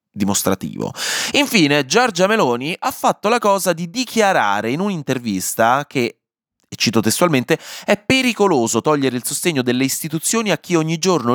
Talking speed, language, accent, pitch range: 145 wpm, Italian, native, 115-185 Hz